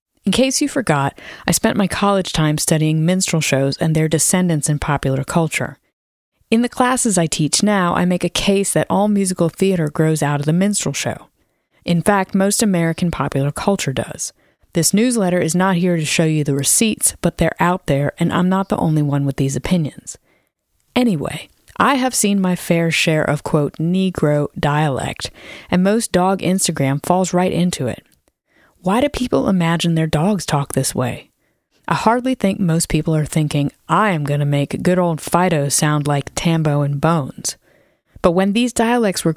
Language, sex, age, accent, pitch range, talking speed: English, female, 30-49, American, 150-200 Hz, 185 wpm